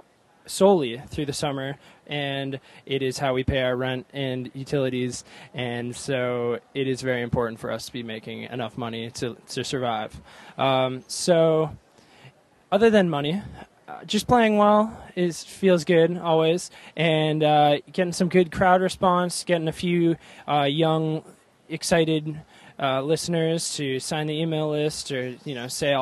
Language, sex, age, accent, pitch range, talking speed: English, male, 20-39, American, 130-160 Hz, 155 wpm